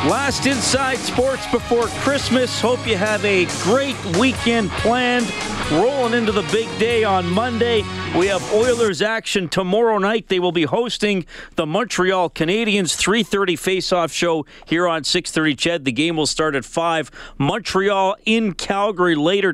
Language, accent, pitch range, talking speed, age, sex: English, American, 155-205 Hz, 150 wpm, 40-59, male